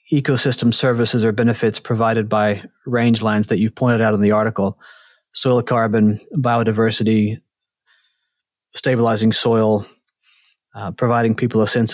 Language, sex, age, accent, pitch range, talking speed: English, male, 30-49, American, 110-125 Hz, 125 wpm